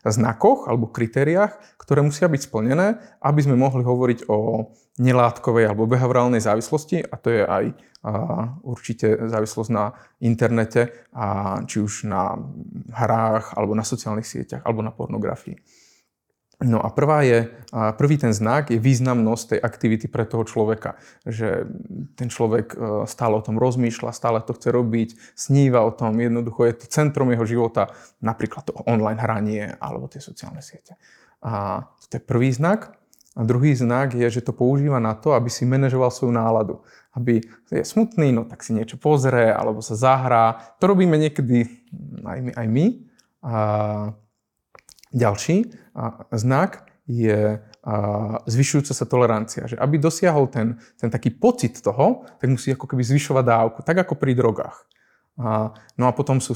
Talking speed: 155 wpm